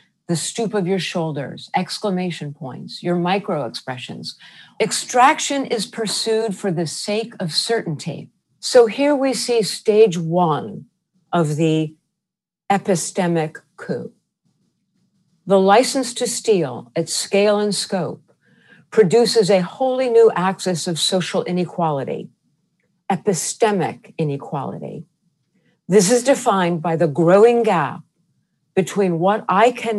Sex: female